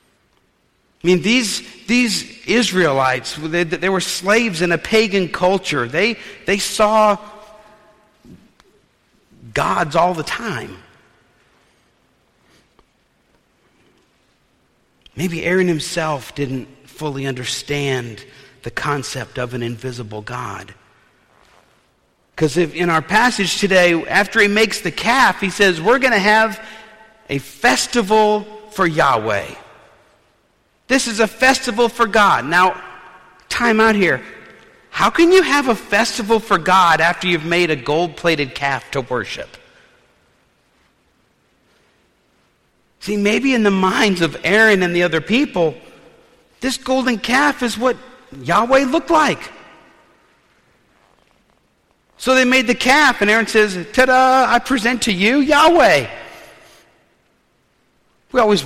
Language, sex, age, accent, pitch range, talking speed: English, male, 50-69, American, 160-235 Hz, 115 wpm